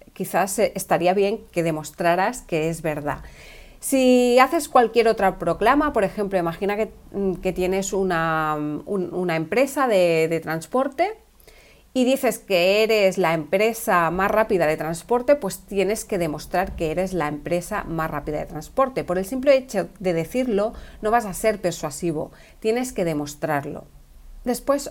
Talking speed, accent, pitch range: 150 wpm, Spanish, 170-225 Hz